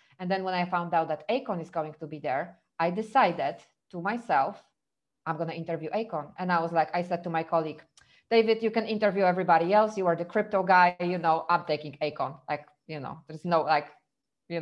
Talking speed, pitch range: 220 wpm, 170-220 Hz